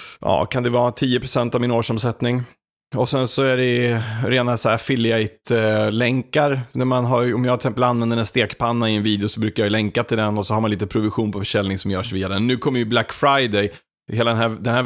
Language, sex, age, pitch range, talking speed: Swedish, male, 30-49, 110-135 Hz, 225 wpm